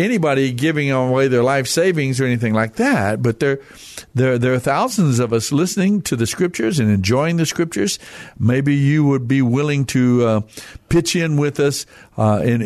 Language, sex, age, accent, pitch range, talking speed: English, male, 60-79, American, 110-140 Hz, 185 wpm